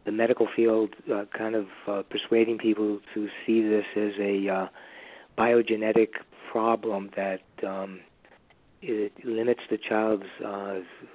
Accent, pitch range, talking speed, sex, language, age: American, 100-110 Hz, 130 wpm, male, English, 40-59